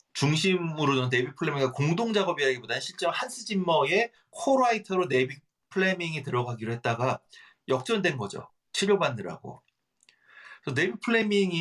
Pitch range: 125-175 Hz